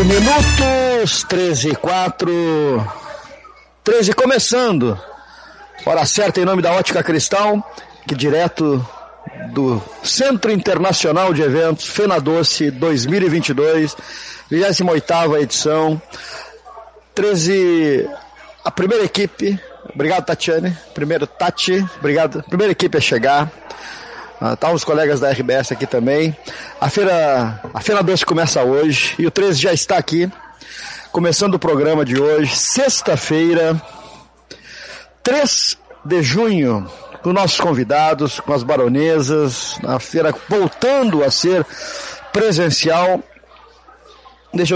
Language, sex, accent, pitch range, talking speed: Portuguese, male, Brazilian, 150-195 Hz, 110 wpm